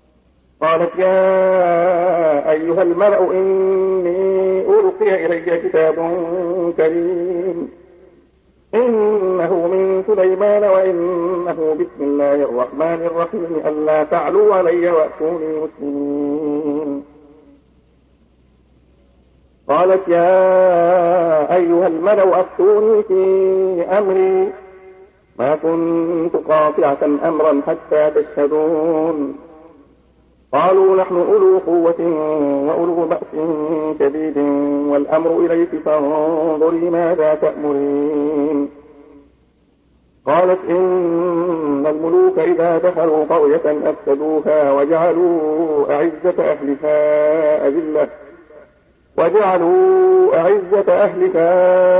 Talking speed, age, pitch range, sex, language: 70 wpm, 50-69, 150-185 Hz, male, Arabic